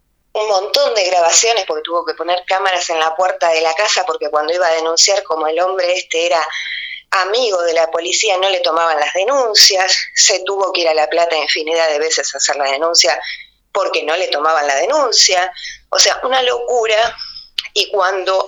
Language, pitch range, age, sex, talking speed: Spanish, 165-250 Hz, 20-39, female, 195 wpm